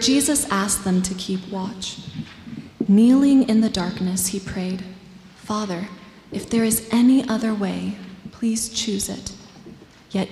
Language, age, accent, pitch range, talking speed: English, 20-39, American, 195-230 Hz, 135 wpm